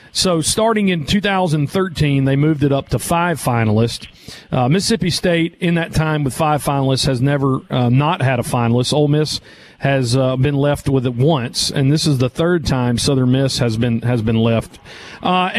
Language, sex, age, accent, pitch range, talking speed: English, male, 40-59, American, 140-185 Hz, 190 wpm